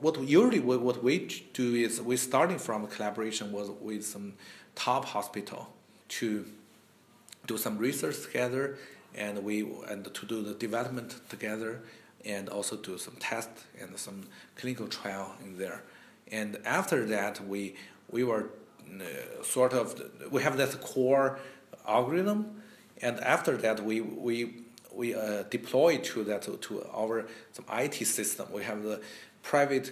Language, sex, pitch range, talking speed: English, male, 105-125 Hz, 145 wpm